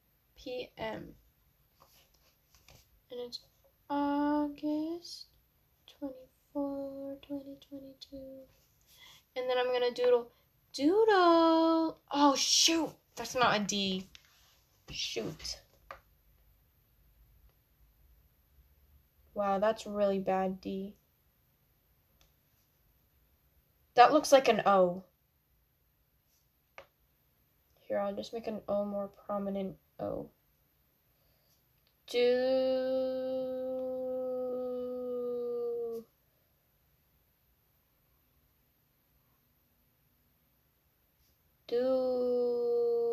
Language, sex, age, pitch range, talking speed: English, female, 10-29, 190-260 Hz, 55 wpm